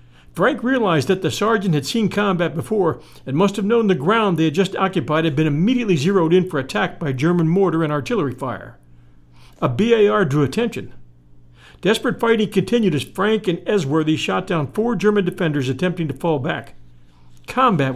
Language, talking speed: English, 175 wpm